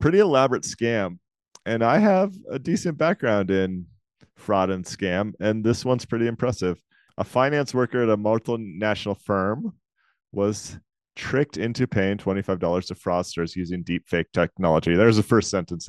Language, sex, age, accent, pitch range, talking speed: English, male, 30-49, American, 100-130 Hz, 145 wpm